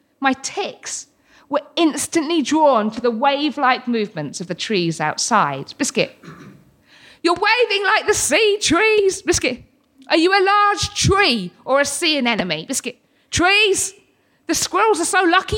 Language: English